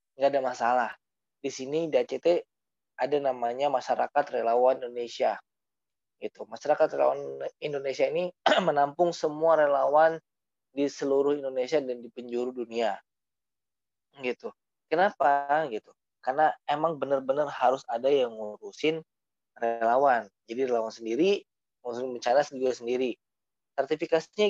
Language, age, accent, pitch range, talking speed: Indonesian, 20-39, native, 125-160 Hz, 115 wpm